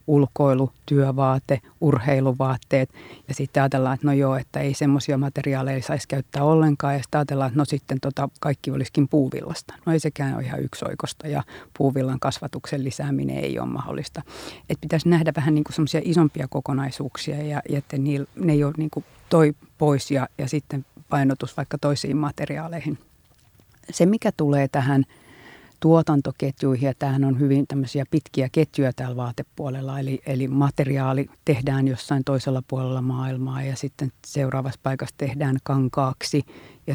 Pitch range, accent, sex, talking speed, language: 135-150 Hz, native, female, 145 wpm, Finnish